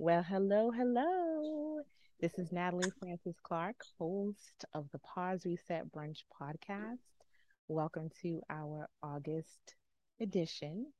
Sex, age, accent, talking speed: female, 30-49, American, 105 wpm